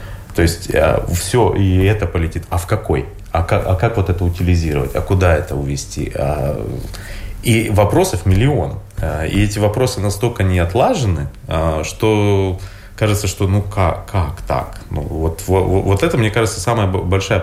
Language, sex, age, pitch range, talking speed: Russian, male, 30-49, 90-105 Hz, 150 wpm